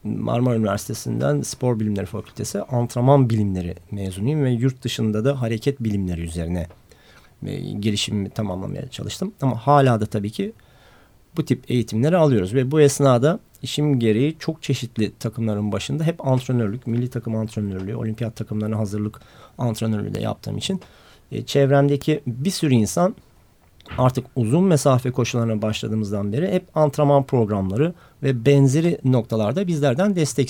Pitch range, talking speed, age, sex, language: 110-140 Hz, 130 wpm, 40-59, male, Turkish